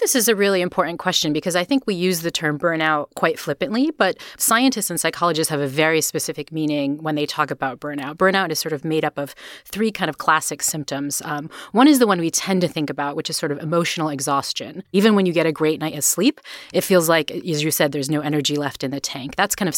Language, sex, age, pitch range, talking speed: English, female, 30-49, 150-190 Hz, 250 wpm